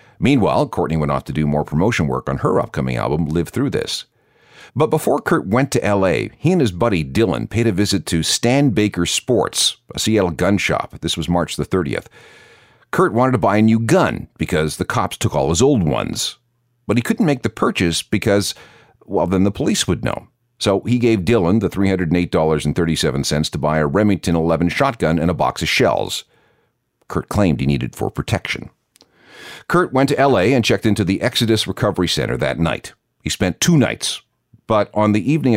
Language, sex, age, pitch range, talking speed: English, male, 50-69, 85-120 Hz, 195 wpm